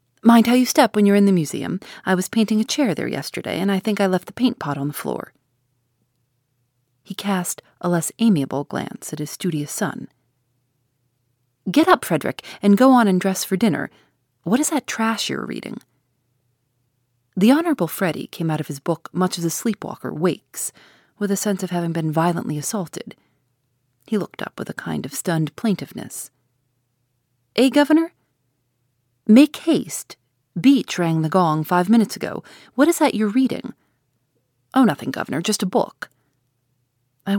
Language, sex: English, female